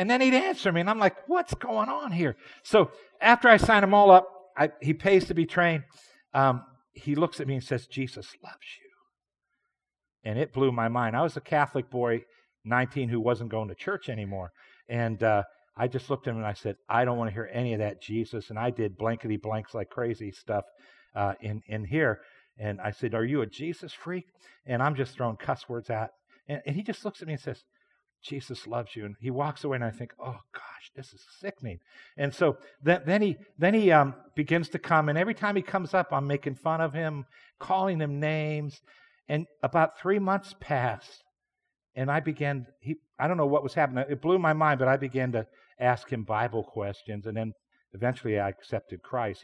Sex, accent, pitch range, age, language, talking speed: male, American, 115-160 Hz, 50-69, English, 220 wpm